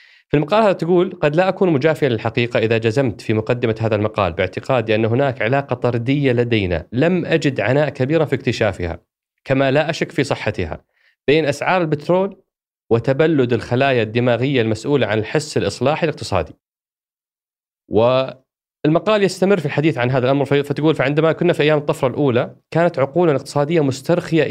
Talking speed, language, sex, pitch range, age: 150 wpm, Arabic, male, 115-150 Hz, 30-49